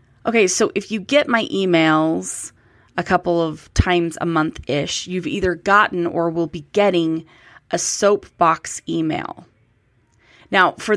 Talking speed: 135 wpm